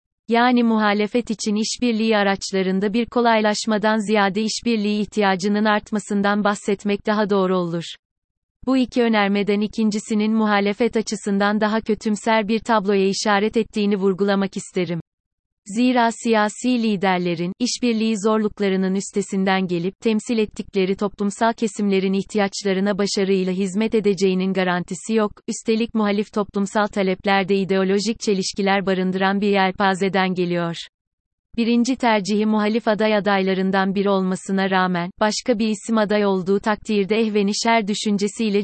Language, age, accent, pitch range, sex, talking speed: Turkish, 30-49, native, 195-220 Hz, female, 110 wpm